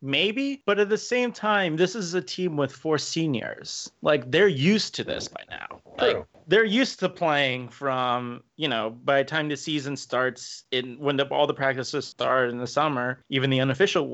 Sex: male